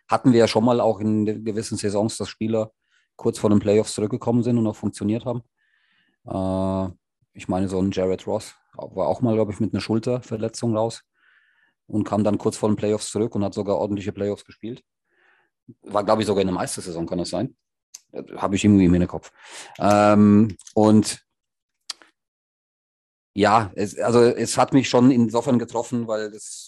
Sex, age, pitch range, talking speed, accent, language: male, 40-59, 95-110 Hz, 180 wpm, German, German